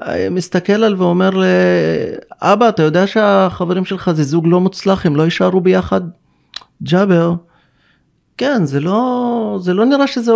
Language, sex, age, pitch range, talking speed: Hebrew, male, 30-49, 140-185 Hz, 135 wpm